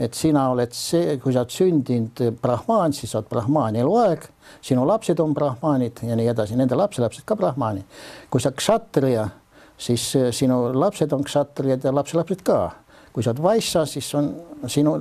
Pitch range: 120-150 Hz